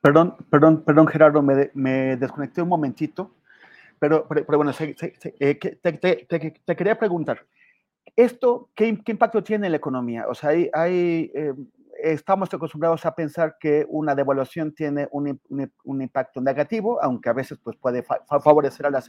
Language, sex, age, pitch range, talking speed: Spanish, male, 30-49, 135-165 Hz, 180 wpm